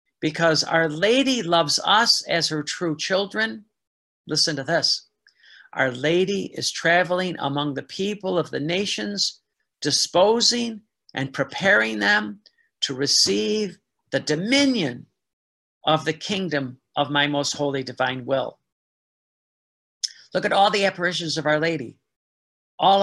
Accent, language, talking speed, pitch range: American, English, 125 wpm, 145-190 Hz